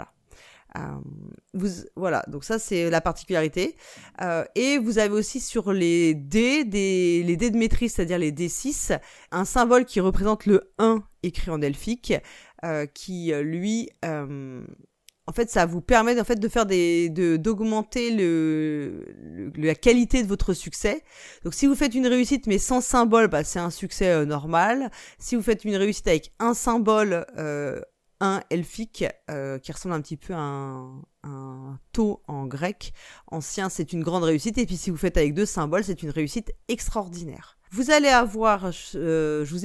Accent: French